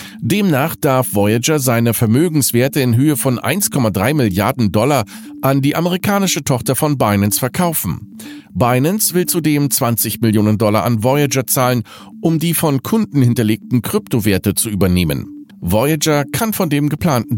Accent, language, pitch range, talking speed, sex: German, German, 110-160 Hz, 140 wpm, male